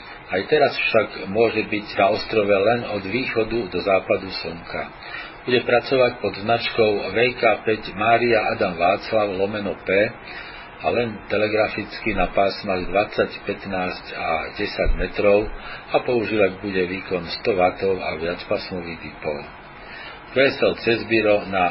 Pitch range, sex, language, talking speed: 95-115 Hz, male, Slovak, 125 wpm